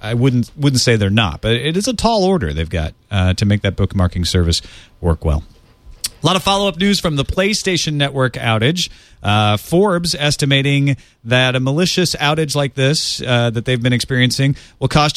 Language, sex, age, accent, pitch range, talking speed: English, male, 40-59, American, 110-140 Hz, 190 wpm